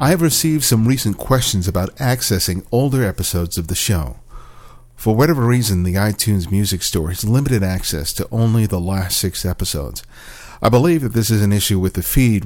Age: 50-69